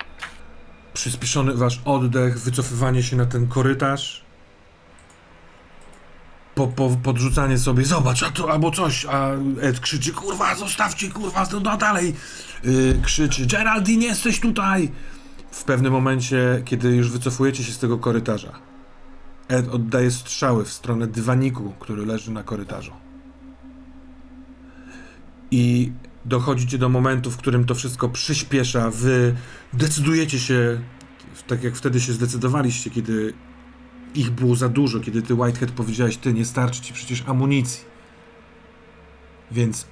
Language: Polish